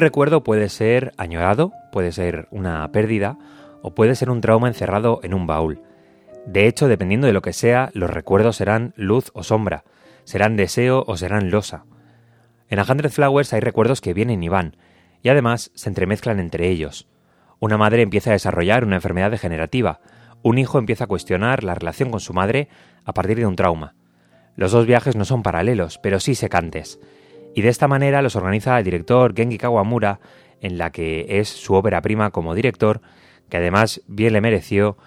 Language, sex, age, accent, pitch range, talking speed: Spanish, male, 30-49, Spanish, 90-120 Hz, 185 wpm